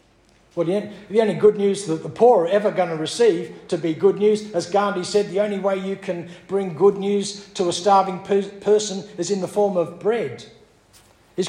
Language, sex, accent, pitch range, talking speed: English, male, Australian, 180-220 Hz, 205 wpm